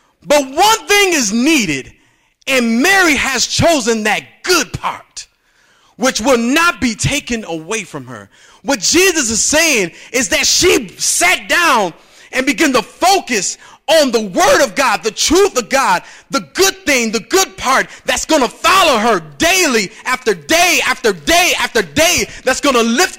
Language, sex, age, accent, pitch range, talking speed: English, male, 30-49, American, 225-310 Hz, 165 wpm